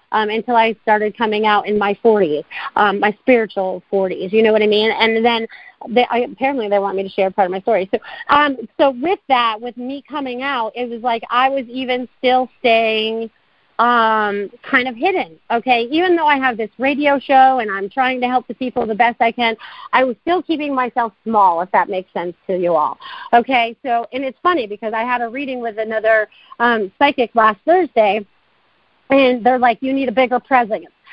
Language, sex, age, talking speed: English, female, 40-59, 210 wpm